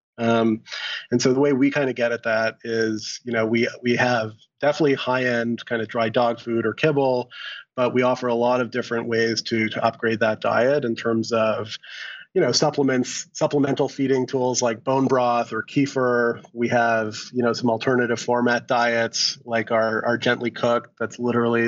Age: 30-49